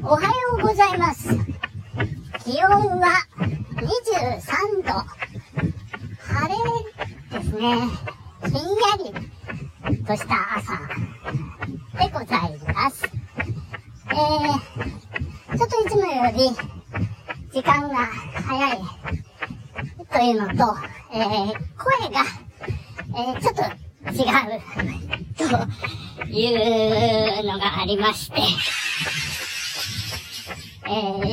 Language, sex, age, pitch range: Japanese, male, 40-59, 205-305 Hz